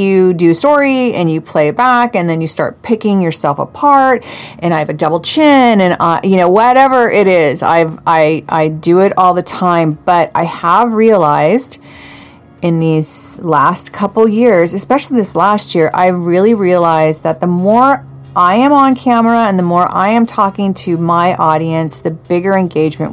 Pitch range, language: 155-205 Hz, English